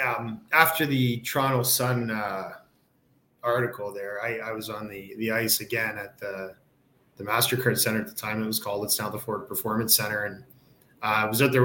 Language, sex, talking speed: English, male, 200 wpm